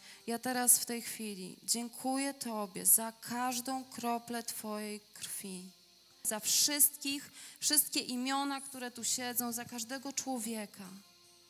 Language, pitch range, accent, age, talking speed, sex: Polish, 240-315 Hz, native, 20-39, 115 wpm, female